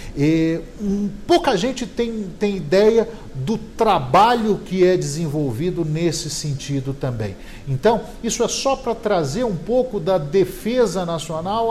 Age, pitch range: 50-69, 155-205 Hz